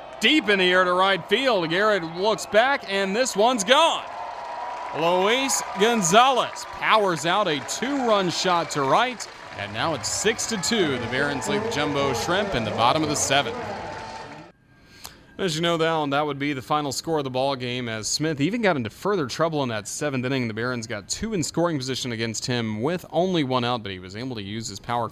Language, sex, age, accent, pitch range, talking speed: English, male, 30-49, American, 110-160 Hz, 205 wpm